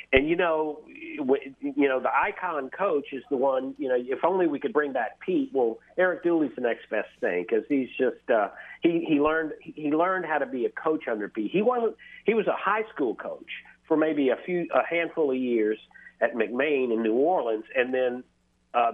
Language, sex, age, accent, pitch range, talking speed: English, male, 50-69, American, 120-170 Hz, 210 wpm